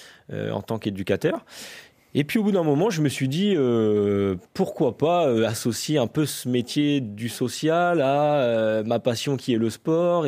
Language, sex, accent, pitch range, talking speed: French, male, French, 105-140 Hz, 195 wpm